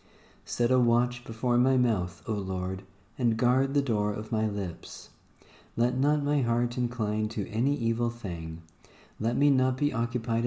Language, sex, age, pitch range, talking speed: English, male, 40-59, 95-125 Hz, 165 wpm